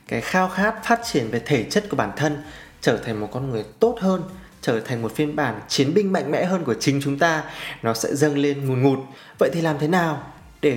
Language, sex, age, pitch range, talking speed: Vietnamese, male, 20-39, 120-155 Hz, 250 wpm